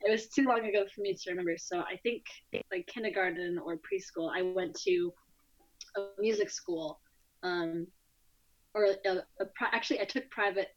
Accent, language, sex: American, English, female